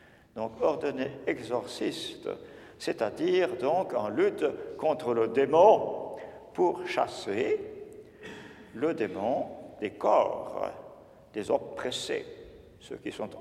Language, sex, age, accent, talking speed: English, male, 50-69, French, 95 wpm